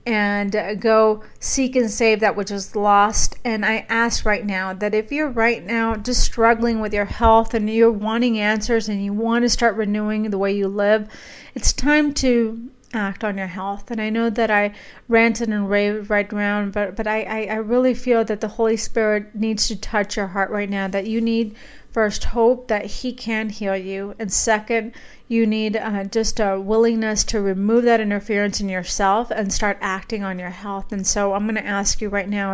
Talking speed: 205 wpm